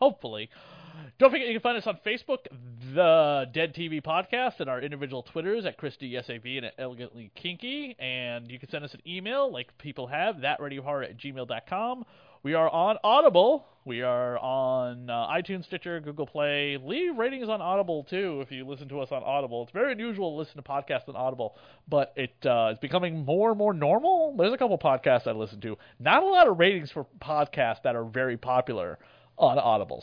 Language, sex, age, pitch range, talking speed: English, male, 30-49, 120-160 Hz, 205 wpm